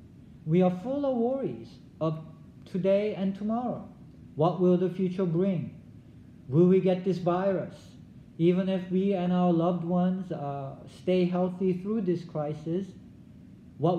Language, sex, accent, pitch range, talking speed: English, male, Japanese, 150-190 Hz, 140 wpm